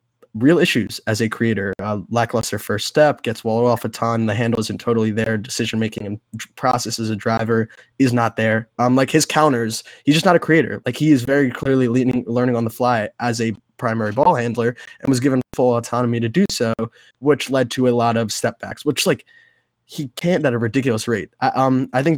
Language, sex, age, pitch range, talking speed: English, male, 20-39, 110-130 Hz, 215 wpm